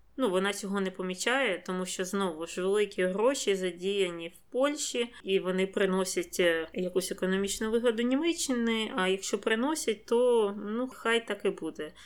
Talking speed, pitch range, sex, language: 150 wpm, 185-215 Hz, female, Ukrainian